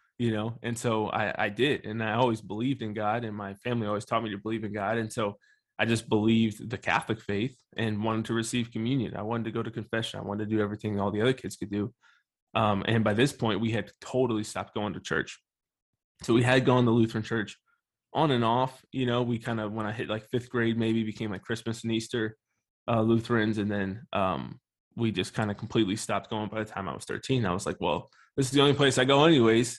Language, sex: English, male